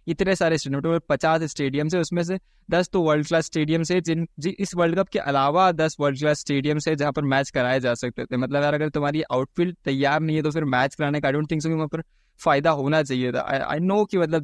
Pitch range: 135-160 Hz